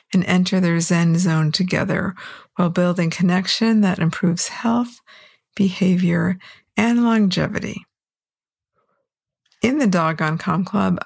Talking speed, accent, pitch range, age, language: 115 wpm, American, 175-205 Hz, 50-69, English